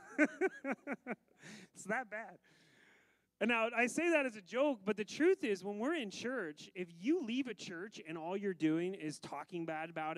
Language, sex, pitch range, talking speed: English, male, 155-230 Hz, 190 wpm